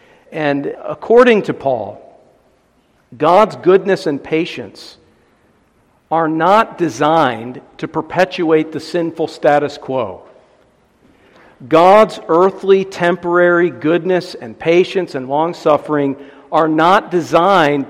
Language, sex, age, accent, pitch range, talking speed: English, male, 50-69, American, 145-180 Hz, 95 wpm